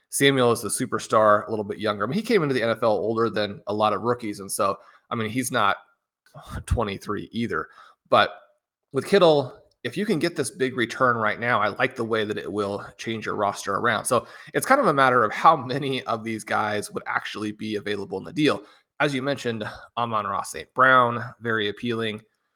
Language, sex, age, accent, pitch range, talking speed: English, male, 30-49, American, 110-135 Hz, 215 wpm